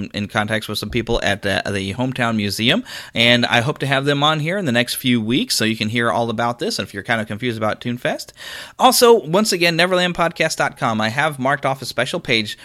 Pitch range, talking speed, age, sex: 110-155 Hz, 230 wpm, 30-49, male